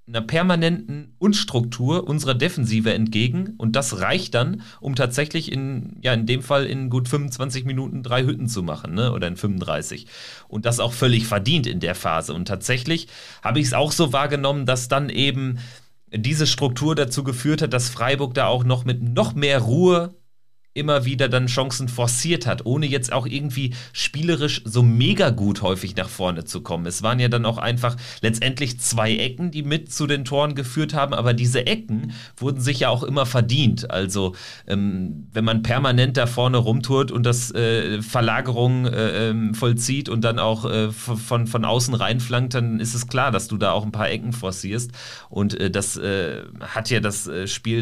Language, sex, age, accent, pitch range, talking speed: German, male, 40-59, German, 110-135 Hz, 185 wpm